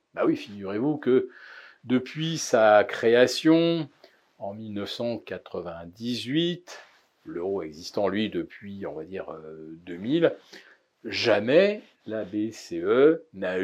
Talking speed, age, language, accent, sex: 90 wpm, 40-59, French, French, male